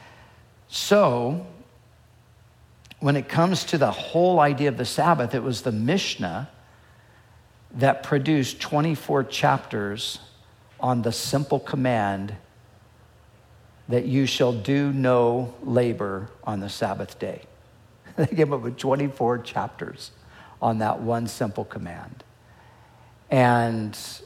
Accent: American